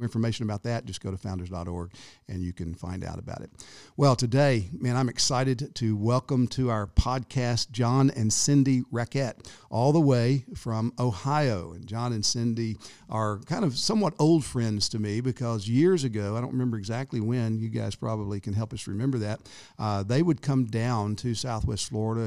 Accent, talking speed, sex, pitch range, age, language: American, 185 wpm, male, 110-135 Hz, 50-69, English